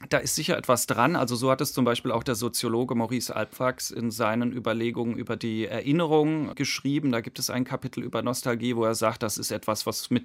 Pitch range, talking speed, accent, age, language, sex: 115-130 Hz, 225 wpm, German, 40-59, German, male